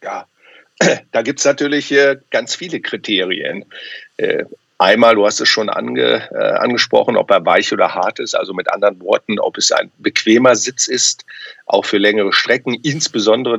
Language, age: German, 50-69